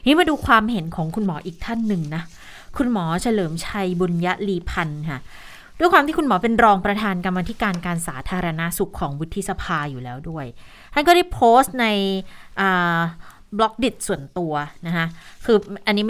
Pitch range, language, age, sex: 170-215 Hz, Thai, 20-39, female